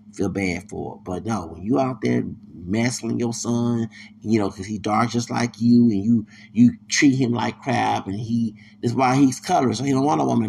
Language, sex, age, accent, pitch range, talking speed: English, male, 30-49, American, 105-125 Hz, 235 wpm